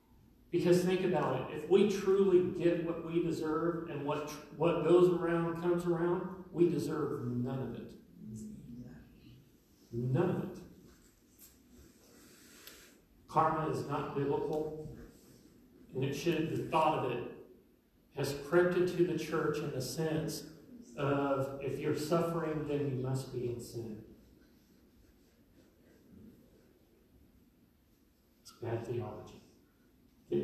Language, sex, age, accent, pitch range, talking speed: English, male, 40-59, American, 130-165 Hz, 120 wpm